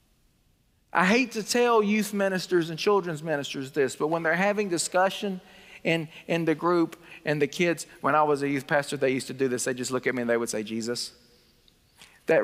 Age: 40-59